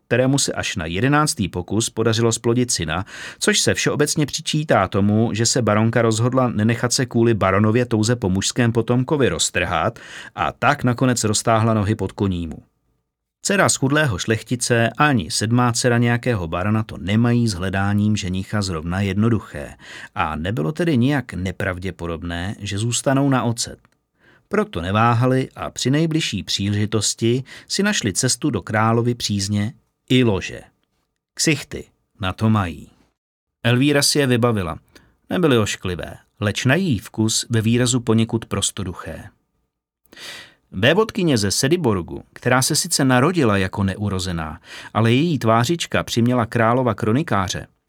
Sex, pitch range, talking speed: male, 100-125 Hz, 135 wpm